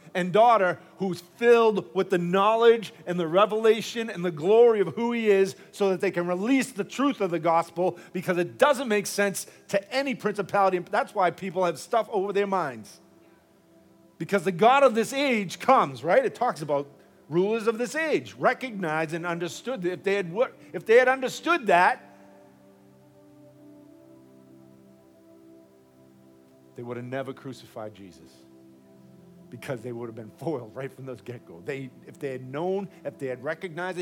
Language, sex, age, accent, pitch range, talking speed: English, male, 50-69, American, 140-205 Hz, 170 wpm